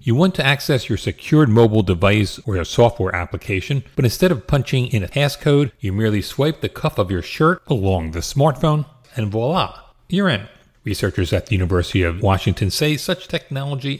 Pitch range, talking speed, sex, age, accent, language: 100-140 Hz, 185 wpm, male, 40-59, American, English